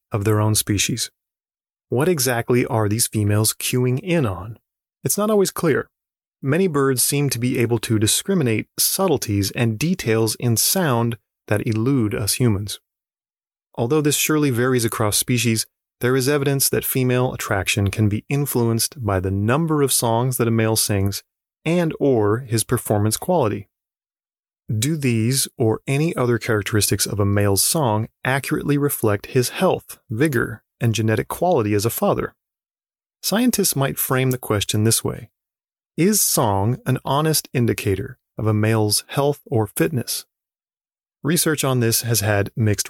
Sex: male